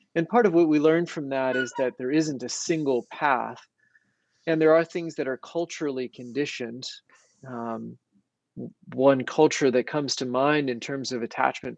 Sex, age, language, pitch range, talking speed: male, 30-49, English, 120-155 Hz, 175 wpm